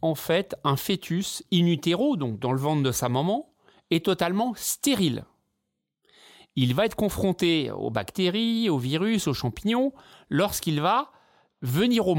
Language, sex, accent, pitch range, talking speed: French, male, French, 140-210 Hz, 150 wpm